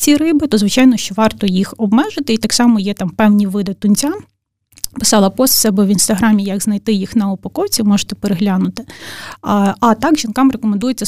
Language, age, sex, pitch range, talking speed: Ukrainian, 20-39, female, 200-230 Hz, 185 wpm